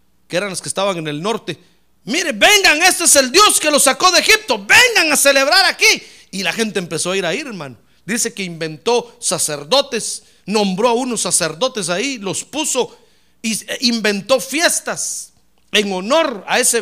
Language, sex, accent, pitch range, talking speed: Spanish, male, Mexican, 165-265 Hz, 175 wpm